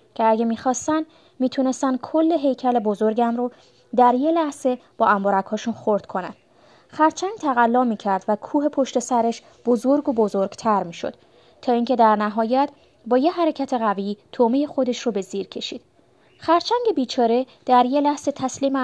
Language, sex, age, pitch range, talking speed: Persian, female, 20-39, 215-275 Hz, 145 wpm